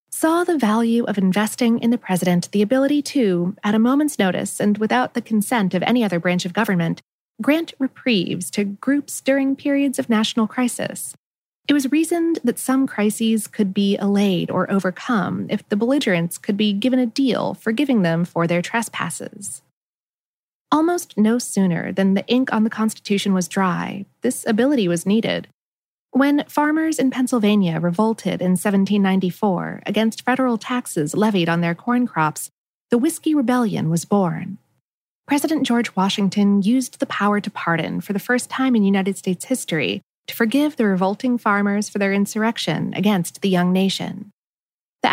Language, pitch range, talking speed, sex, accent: English, 190-250 Hz, 160 wpm, female, American